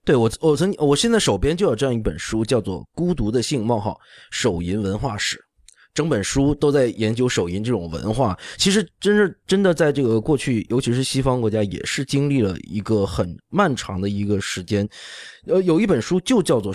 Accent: native